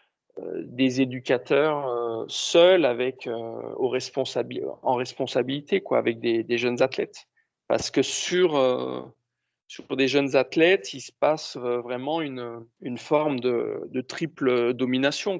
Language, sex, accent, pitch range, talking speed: French, male, French, 120-150 Hz, 145 wpm